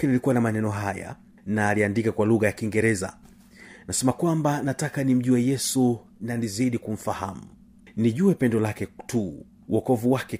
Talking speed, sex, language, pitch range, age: 140 wpm, male, Swahili, 110-145 Hz, 40-59